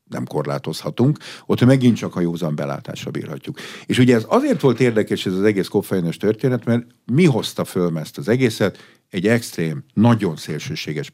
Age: 50-69